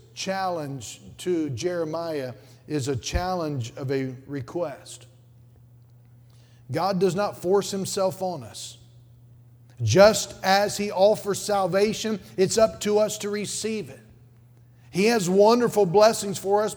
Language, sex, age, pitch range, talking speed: English, male, 50-69, 125-200 Hz, 120 wpm